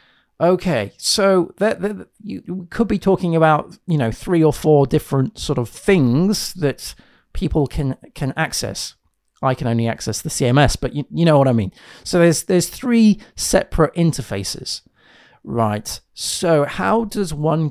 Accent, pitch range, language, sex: British, 125-175 Hz, English, male